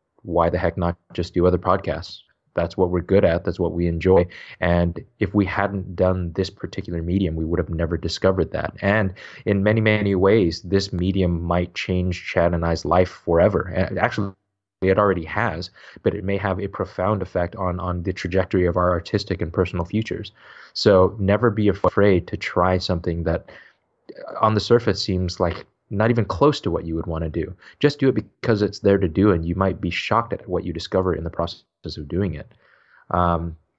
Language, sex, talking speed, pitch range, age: English, male, 200 wpm, 90-100 Hz, 20-39